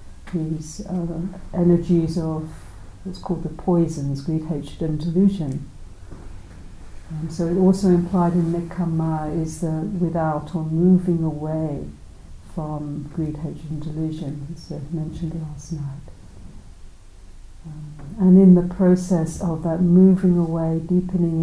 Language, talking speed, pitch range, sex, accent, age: English, 120 wpm, 155-180 Hz, female, British, 60-79